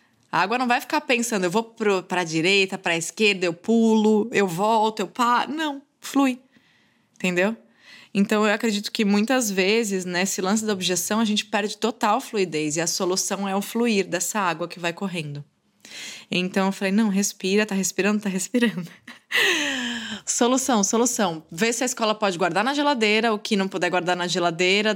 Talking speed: 180 wpm